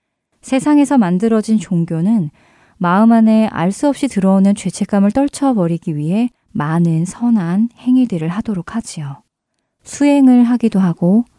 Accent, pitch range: native, 170-225 Hz